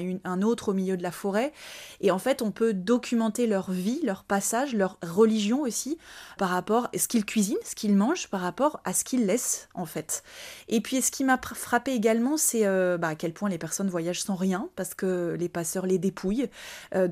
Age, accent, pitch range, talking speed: 20-39, French, 180-225 Hz, 220 wpm